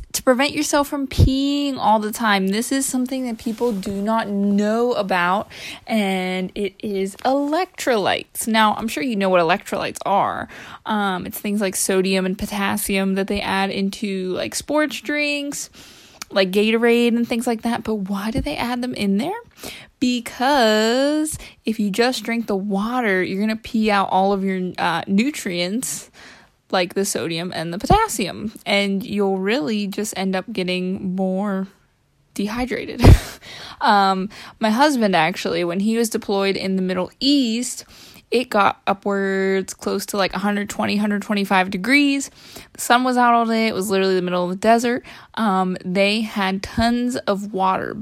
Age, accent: 20-39, American